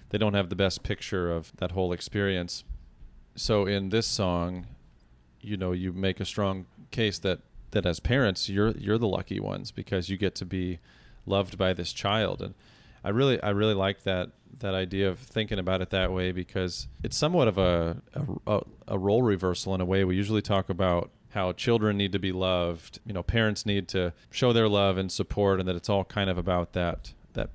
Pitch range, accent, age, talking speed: 90-105 Hz, American, 30-49, 205 wpm